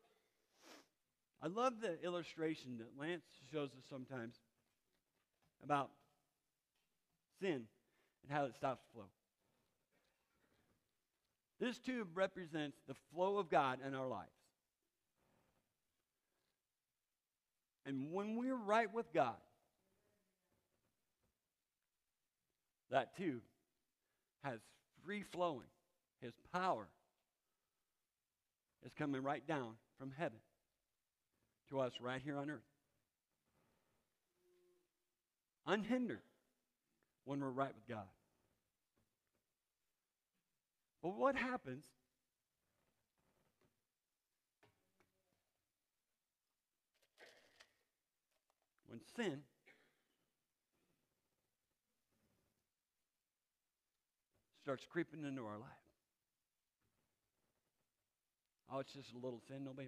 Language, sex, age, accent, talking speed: English, male, 50-69, American, 75 wpm